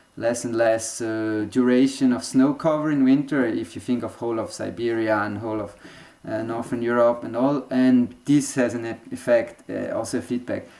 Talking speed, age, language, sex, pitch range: 190 wpm, 30-49, English, male, 125-165 Hz